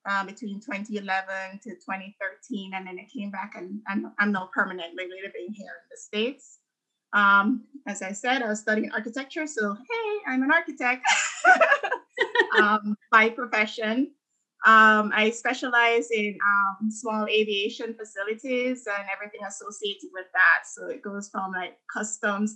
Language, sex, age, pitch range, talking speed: English, female, 20-39, 205-235 Hz, 150 wpm